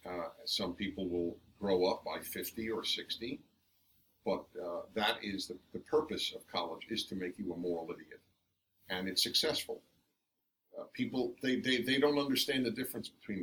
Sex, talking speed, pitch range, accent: male, 175 wpm, 105-145 Hz, American